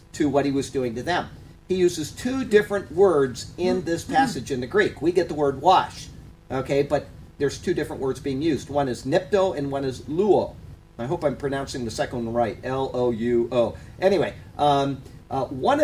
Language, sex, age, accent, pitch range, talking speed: English, male, 50-69, American, 130-180 Hz, 195 wpm